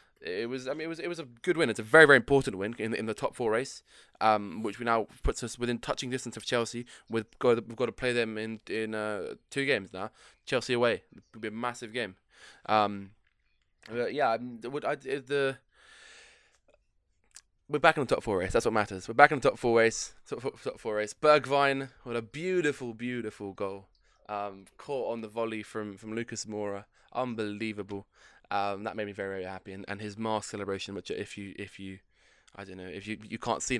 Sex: male